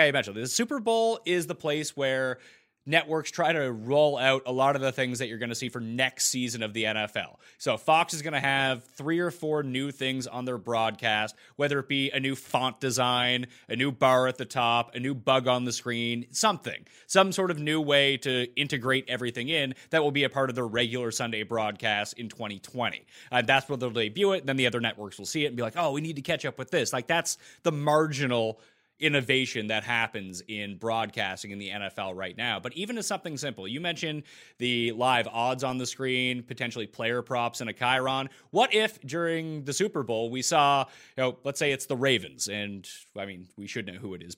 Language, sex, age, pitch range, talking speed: English, male, 30-49, 120-145 Hz, 225 wpm